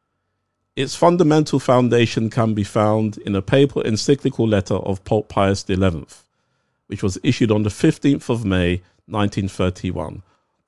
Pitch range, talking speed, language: 95-125 Hz, 135 wpm, English